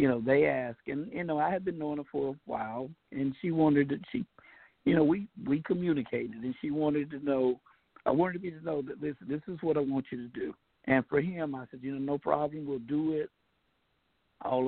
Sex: male